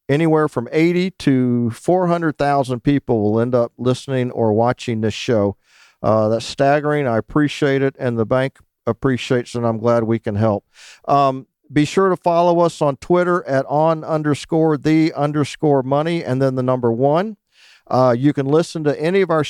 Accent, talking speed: American, 180 wpm